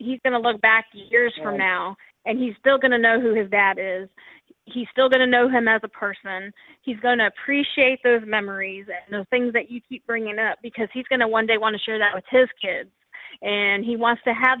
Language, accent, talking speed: English, American, 240 wpm